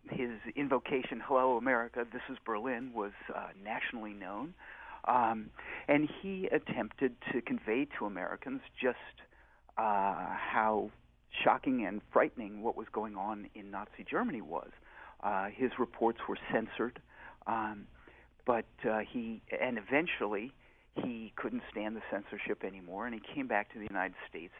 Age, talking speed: 50-69, 140 wpm